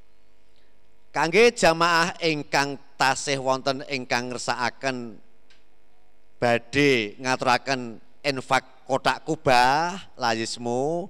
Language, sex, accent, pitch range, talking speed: Indonesian, male, native, 115-145 Hz, 70 wpm